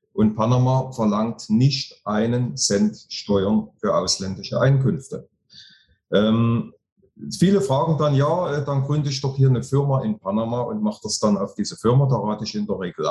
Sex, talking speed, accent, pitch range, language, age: male, 170 wpm, German, 105-130 Hz, German, 30-49